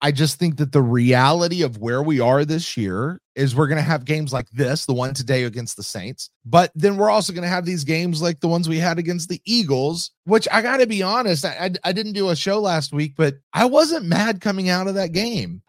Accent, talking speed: American, 255 wpm